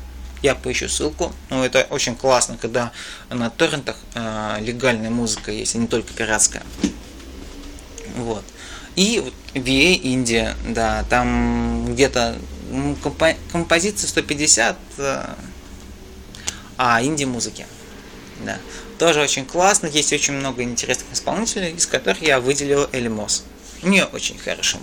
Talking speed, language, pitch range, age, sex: 110 wpm, Russian, 120-165 Hz, 20-39, male